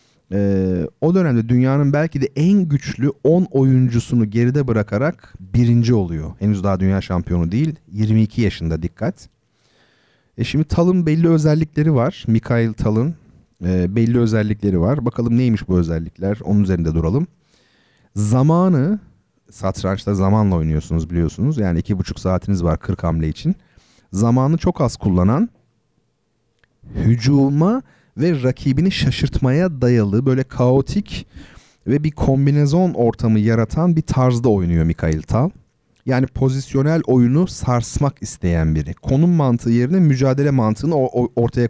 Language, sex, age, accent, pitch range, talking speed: Turkish, male, 40-59, native, 100-140 Hz, 125 wpm